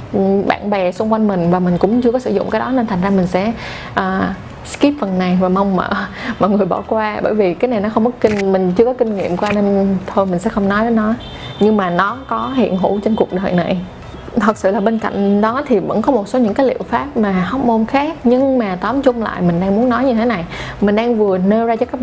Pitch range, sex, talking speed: 190-240 Hz, female, 270 wpm